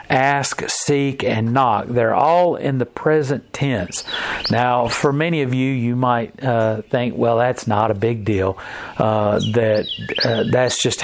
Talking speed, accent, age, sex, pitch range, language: 165 wpm, American, 50-69, male, 110-150 Hz, English